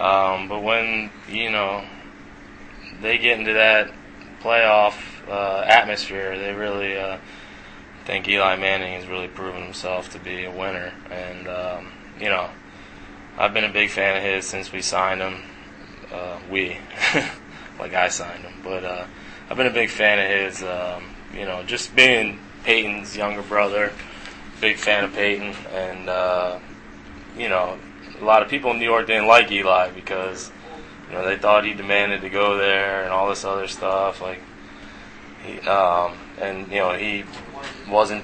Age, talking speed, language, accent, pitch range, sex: 20-39, 165 wpm, English, American, 90-105 Hz, male